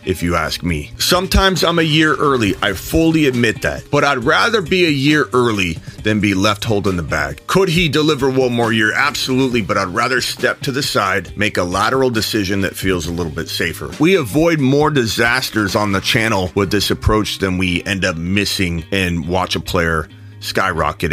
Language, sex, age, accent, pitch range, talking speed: English, male, 30-49, American, 90-115 Hz, 200 wpm